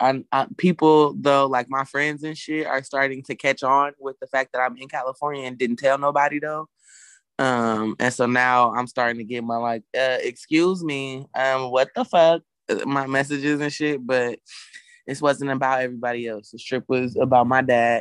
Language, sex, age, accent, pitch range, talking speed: English, male, 20-39, American, 120-135 Hz, 195 wpm